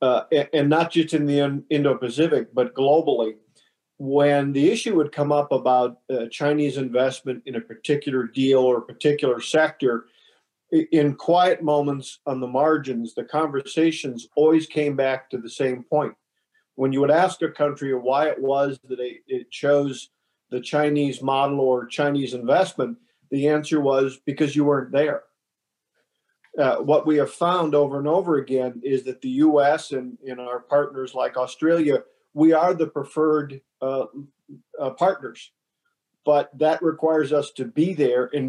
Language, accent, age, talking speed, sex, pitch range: English, American, 50-69, 155 wpm, male, 130-155 Hz